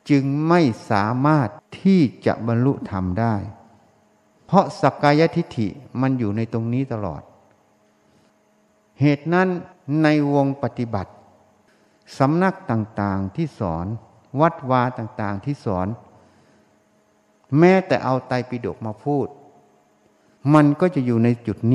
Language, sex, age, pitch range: Thai, male, 60-79, 105-145 Hz